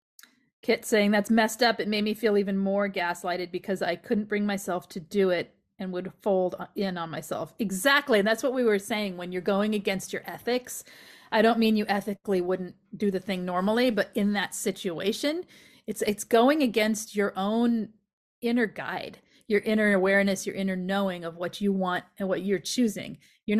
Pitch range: 185-220 Hz